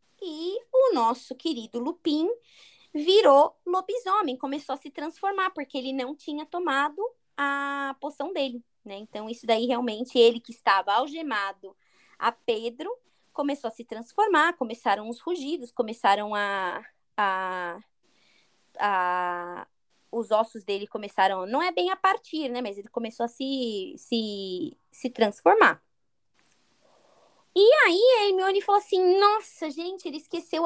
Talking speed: 135 wpm